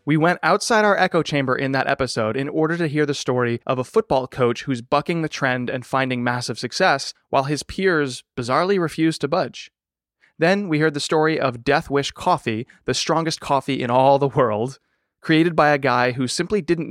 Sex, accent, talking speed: male, American, 200 wpm